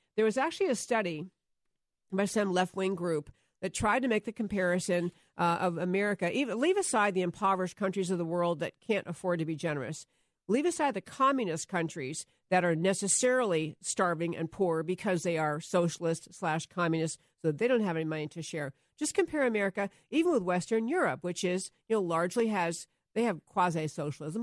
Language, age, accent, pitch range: English, 50-69, American, 170-215 Hz